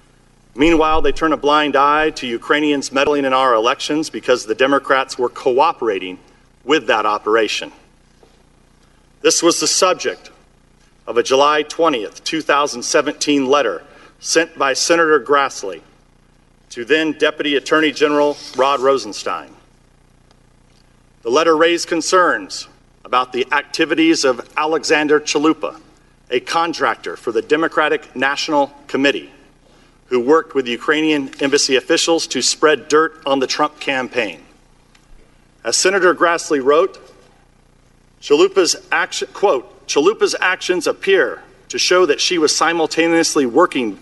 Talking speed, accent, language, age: 115 wpm, American, English, 40-59